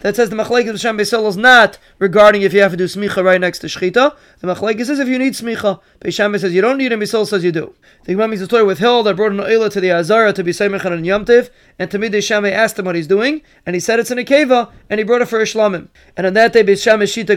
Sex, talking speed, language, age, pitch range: male, 280 wpm, English, 30-49, 195-230 Hz